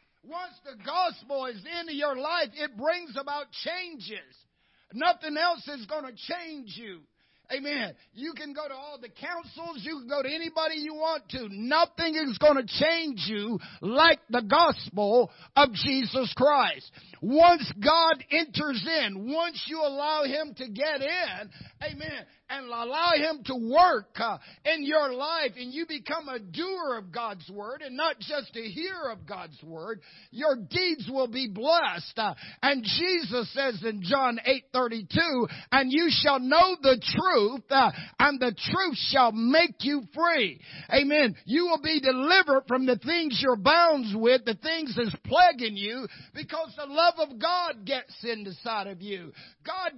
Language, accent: English, American